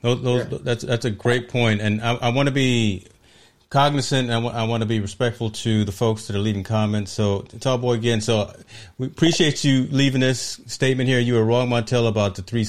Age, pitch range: 40-59, 100-120 Hz